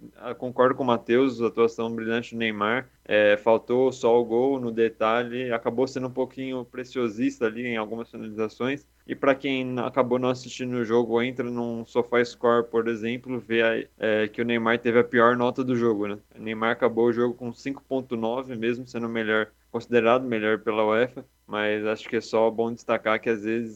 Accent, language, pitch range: Brazilian, Portuguese, 115-130 Hz